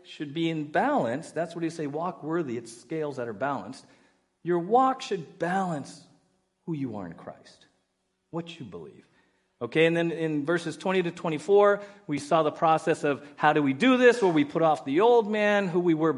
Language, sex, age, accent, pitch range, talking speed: English, male, 40-59, American, 150-200 Hz, 210 wpm